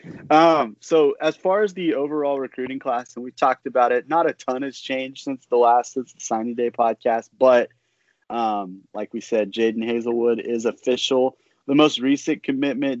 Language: English